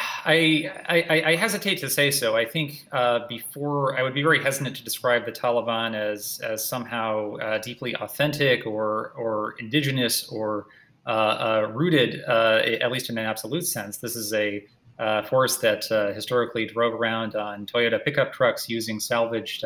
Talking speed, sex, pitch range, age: 170 wpm, male, 110-125 Hz, 30-49